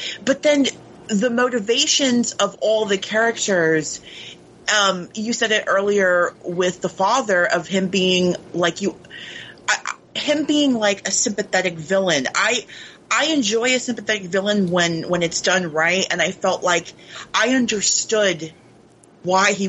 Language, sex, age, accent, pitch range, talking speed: English, female, 30-49, American, 185-255 Hz, 145 wpm